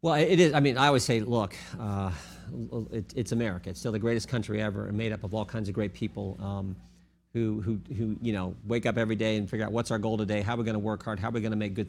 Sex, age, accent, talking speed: male, 50-69, American, 300 wpm